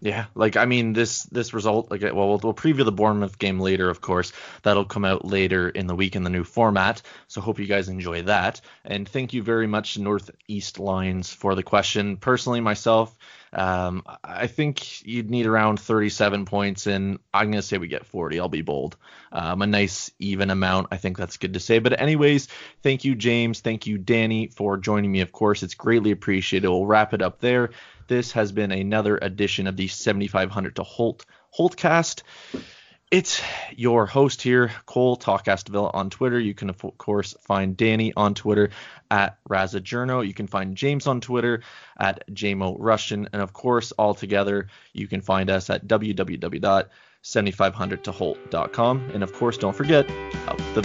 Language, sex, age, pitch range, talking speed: English, male, 20-39, 95-115 Hz, 180 wpm